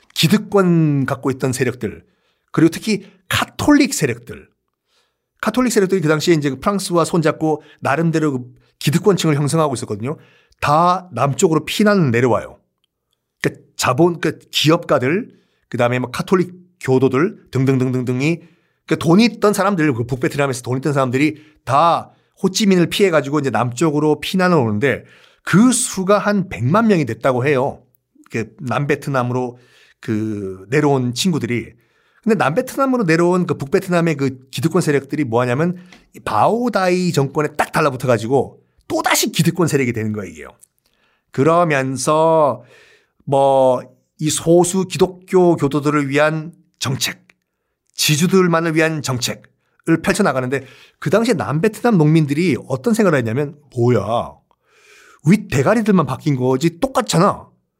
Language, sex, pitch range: Korean, male, 135-185 Hz